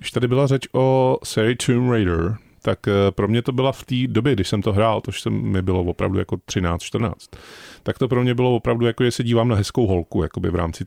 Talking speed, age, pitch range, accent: 240 wpm, 30-49, 95-115 Hz, native